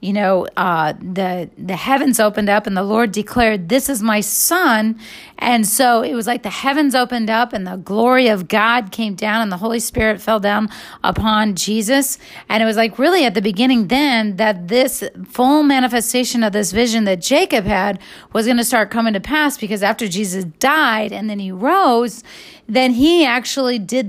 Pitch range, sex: 210-255 Hz, female